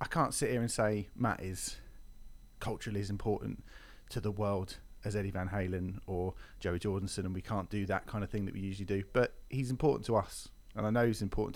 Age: 30-49